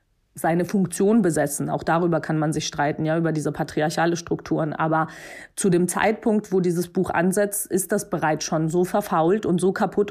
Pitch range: 170-195 Hz